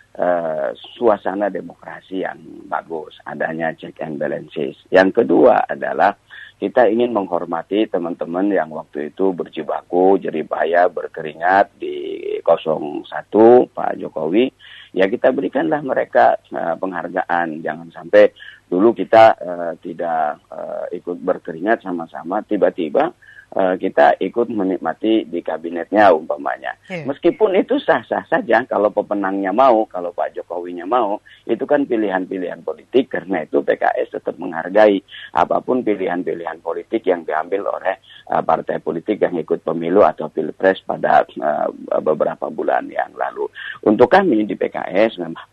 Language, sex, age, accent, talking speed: Indonesian, male, 40-59, native, 115 wpm